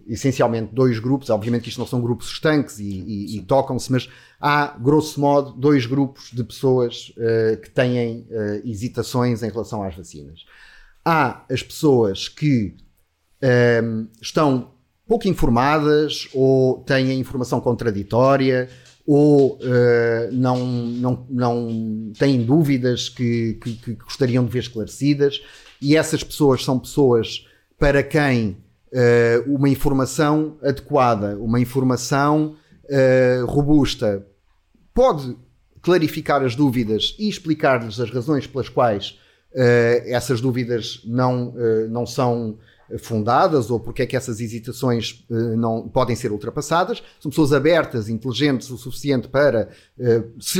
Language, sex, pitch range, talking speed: Portuguese, male, 115-140 Hz, 120 wpm